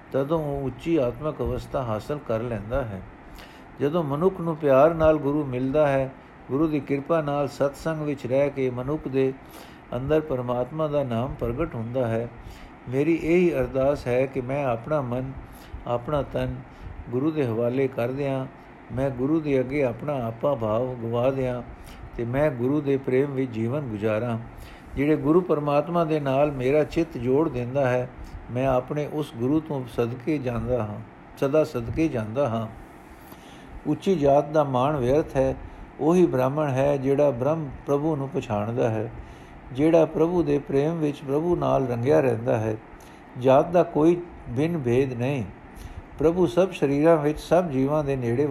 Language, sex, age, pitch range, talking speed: Punjabi, male, 60-79, 120-150 Hz, 155 wpm